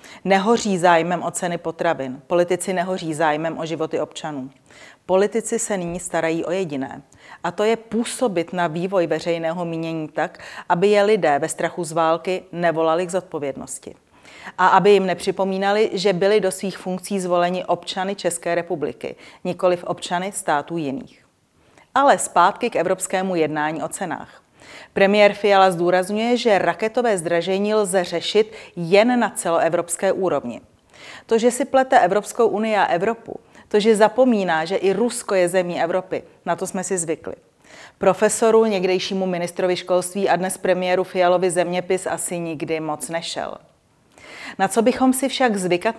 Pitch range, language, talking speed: 175-205 Hz, Czech, 145 wpm